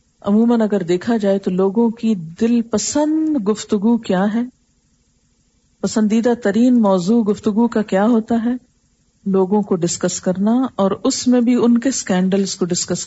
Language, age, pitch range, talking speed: Urdu, 40-59, 195-240 Hz, 150 wpm